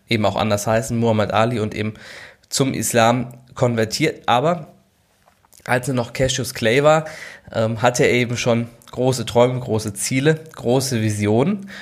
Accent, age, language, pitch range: German, 20-39, German, 110-130 Hz